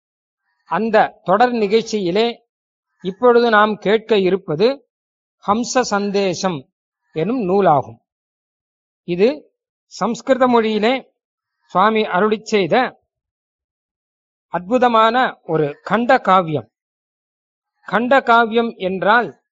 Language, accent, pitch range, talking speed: Tamil, native, 175-235 Hz, 75 wpm